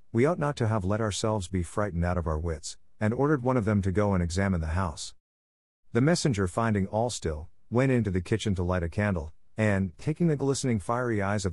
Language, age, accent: English, 50-69, American